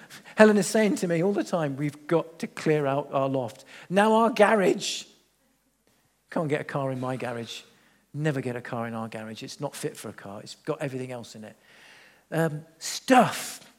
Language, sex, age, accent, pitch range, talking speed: English, male, 50-69, British, 140-205 Hz, 200 wpm